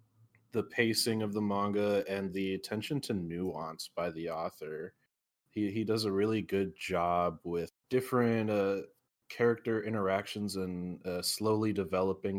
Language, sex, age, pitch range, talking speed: English, male, 20-39, 90-105 Hz, 140 wpm